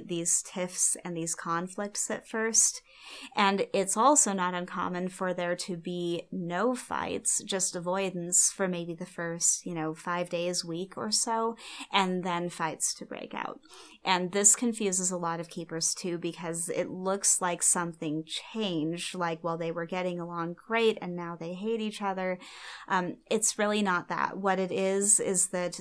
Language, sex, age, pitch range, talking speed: English, female, 30-49, 175-200 Hz, 175 wpm